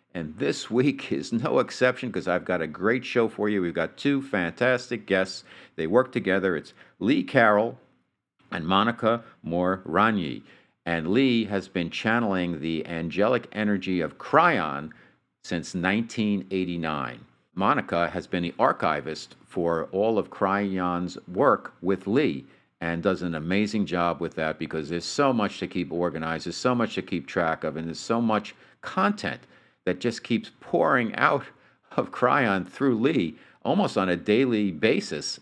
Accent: American